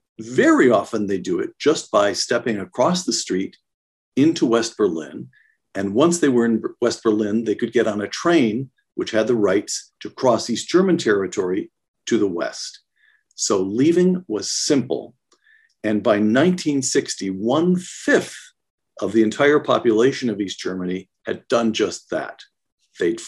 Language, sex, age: English, male, 50-69